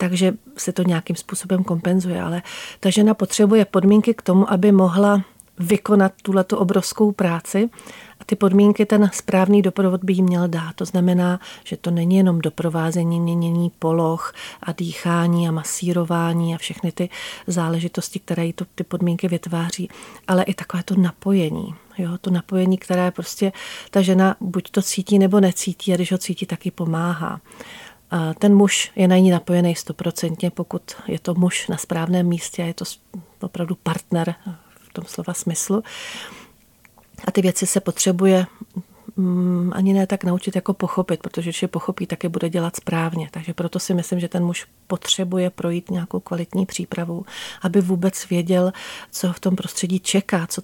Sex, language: female, Czech